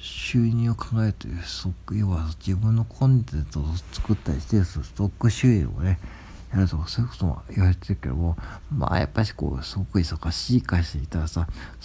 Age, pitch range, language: 60-79, 85-110 Hz, Japanese